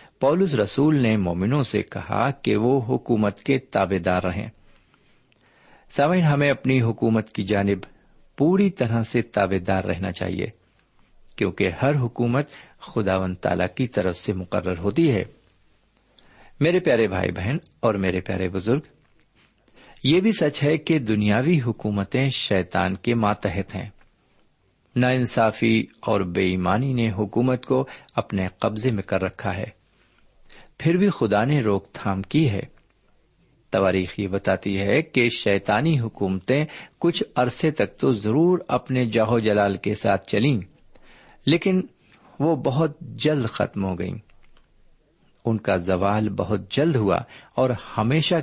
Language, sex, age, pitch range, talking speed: Urdu, male, 50-69, 100-140 Hz, 135 wpm